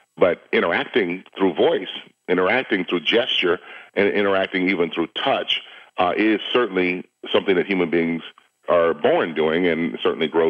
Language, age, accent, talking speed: English, 40-59, American, 145 wpm